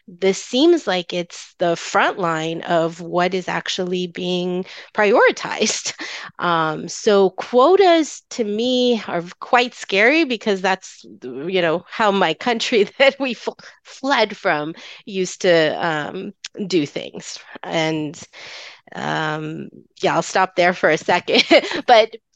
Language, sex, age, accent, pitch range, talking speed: English, female, 30-49, American, 175-215 Hz, 125 wpm